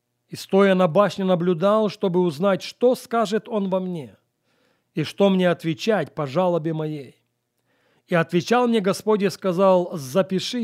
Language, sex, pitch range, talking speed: Russian, male, 160-215 Hz, 145 wpm